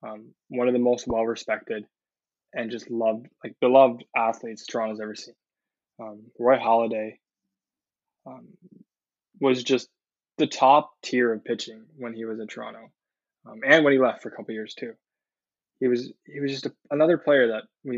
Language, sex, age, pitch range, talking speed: English, male, 20-39, 110-125 Hz, 165 wpm